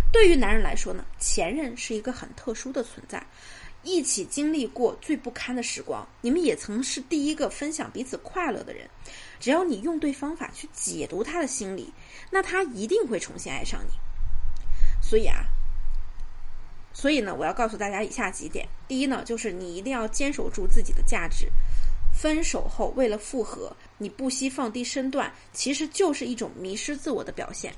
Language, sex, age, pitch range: Chinese, female, 20-39, 220-310 Hz